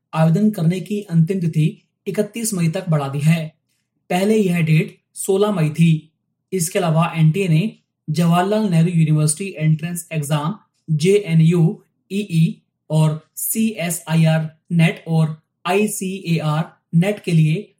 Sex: male